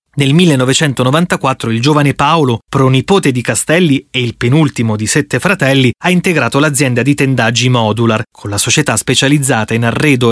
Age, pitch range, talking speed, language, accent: 30-49, 120-160 Hz, 150 wpm, Italian, native